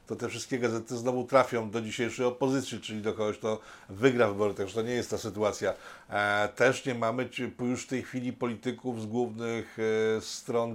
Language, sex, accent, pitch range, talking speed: Polish, male, native, 110-130 Hz, 180 wpm